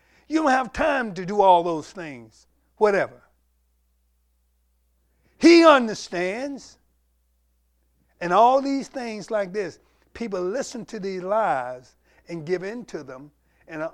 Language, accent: English, American